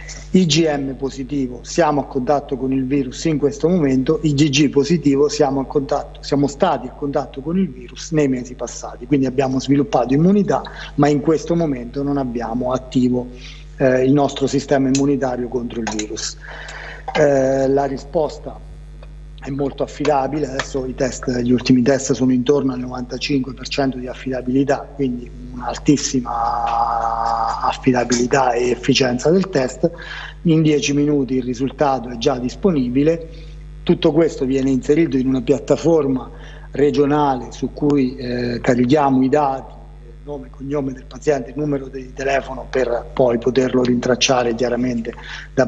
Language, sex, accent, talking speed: Italian, male, native, 140 wpm